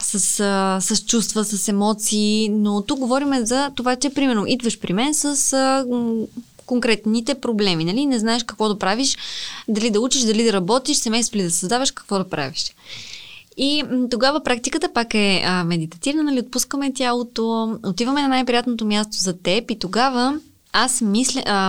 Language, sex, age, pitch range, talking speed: Bulgarian, female, 20-39, 205-260 Hz, 165 wpm